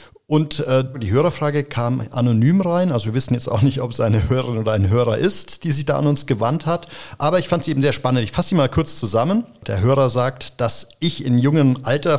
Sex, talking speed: male, 235 wpm